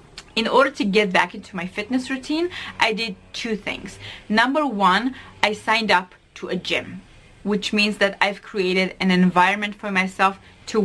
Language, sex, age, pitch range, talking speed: English, female, 20-39, 180-220 Hz, 170 wpm